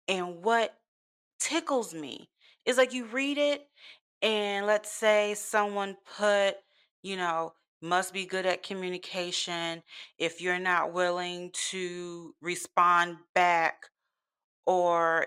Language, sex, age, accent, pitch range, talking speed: English, female, 30-49, American, 160-190 Hz, 115 wpm